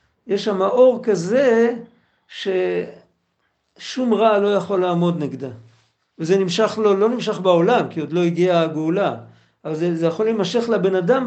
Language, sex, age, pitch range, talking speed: Hebrew, male, 60-79, 175-230 Hz, 155 wpm